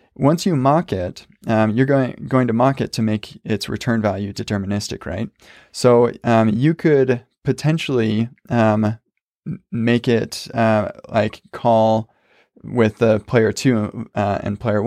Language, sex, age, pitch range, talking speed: English, male, 20-39, 105-125 Hz, 145 wpm